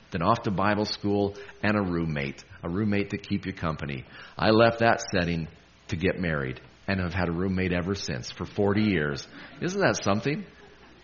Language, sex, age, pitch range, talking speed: English, male, 40-59, 80-105 Hz, 185 wpm